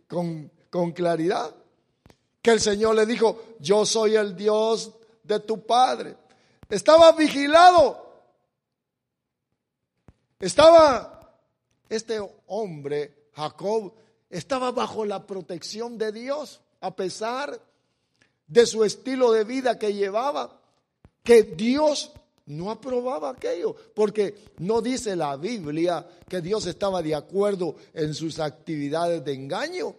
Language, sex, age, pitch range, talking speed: English, male, 50-69, 175-265 Hz, 110 wpm